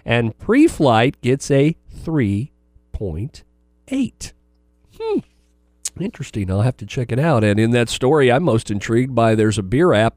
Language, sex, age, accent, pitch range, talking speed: English, male, 40-59, American, 110-165 Hz, 150 wpm